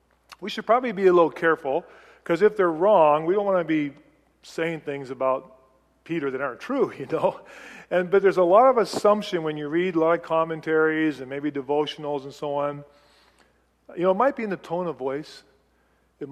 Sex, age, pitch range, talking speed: male, 40-59, 140-180 Hz, 205 wpm